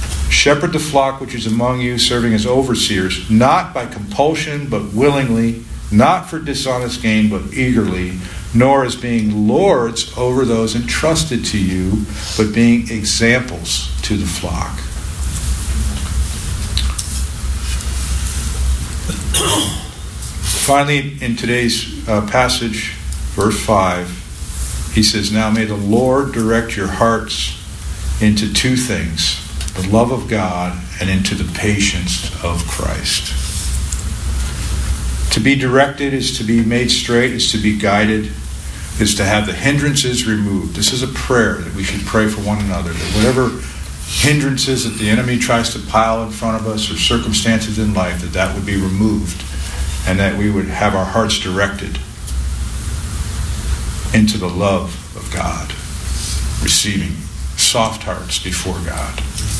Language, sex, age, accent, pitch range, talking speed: English, male, 50-69, American, 80-115 Hz, 135 wpm